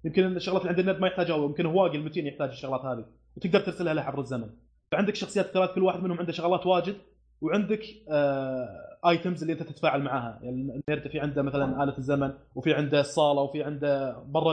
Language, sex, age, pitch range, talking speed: Arabic, male, 20-39, 140-185 Hz, 195 wpm